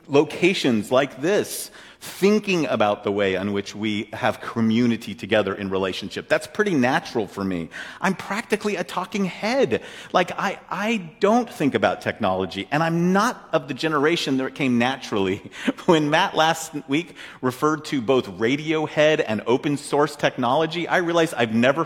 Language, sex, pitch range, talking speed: English, male, 115-180 Hz, 160 wpm